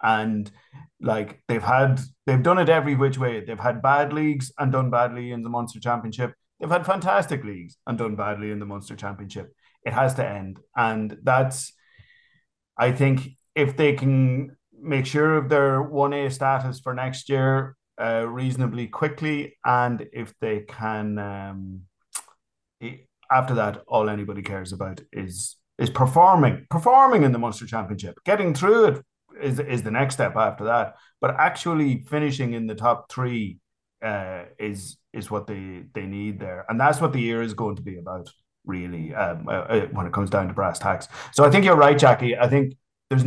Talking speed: 180 wpm